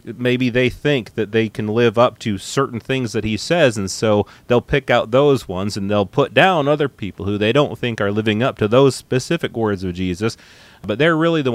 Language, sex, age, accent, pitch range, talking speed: English, male, 30-49, American, 110-145 Hz, 230 wpm